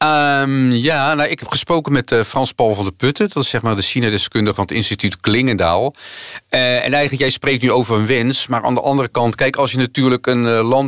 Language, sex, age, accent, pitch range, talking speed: Dutch, male, 50-69, Dutch, 110-135 Hz, 230 wpm